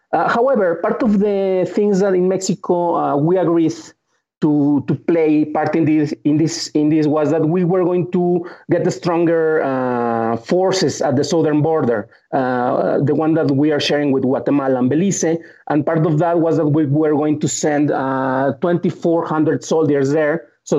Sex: male